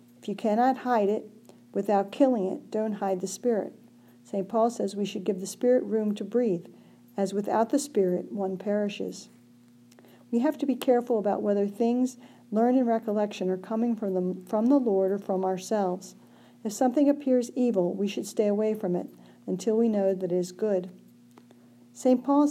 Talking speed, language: 180 wpm, English